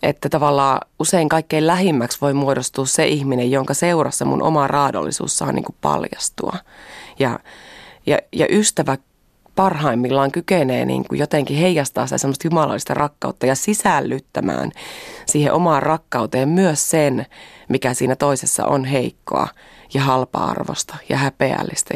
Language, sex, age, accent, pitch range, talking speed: Finnish, female, 30-49, native, 130-160 Hz, 130 wpm